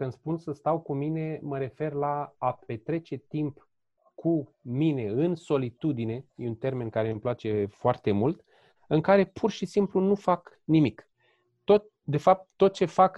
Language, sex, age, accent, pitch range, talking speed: Romanian, male, 30-49, native, 145-180 Hz, 175 wpm